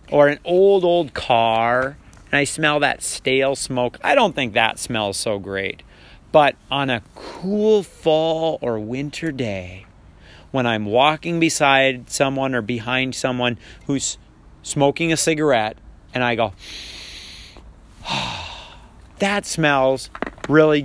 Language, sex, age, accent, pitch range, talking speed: English, male, 40-59, American, 125-165 Hz, 125 wpm